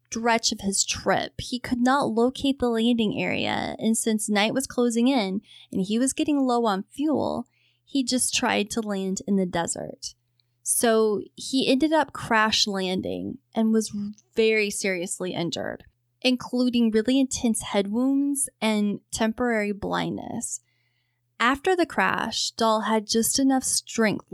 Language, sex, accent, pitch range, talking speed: English, female, American, 190-235 Hz, 145 wpm